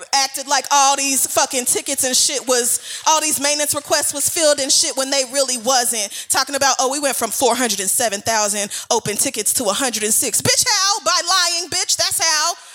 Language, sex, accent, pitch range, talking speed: English, female, American, 230-285 Hz, 185 wpm